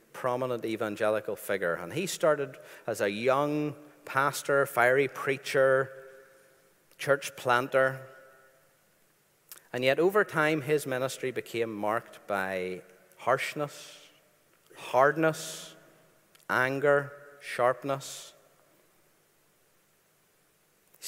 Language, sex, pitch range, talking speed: English, male, 105-150 Hz, 80 wpm